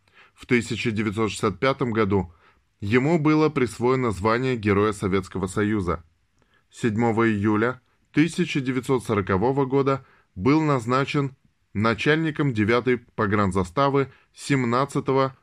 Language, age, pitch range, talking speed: Russian, 20-39, 100-130 Hz, 80 wpm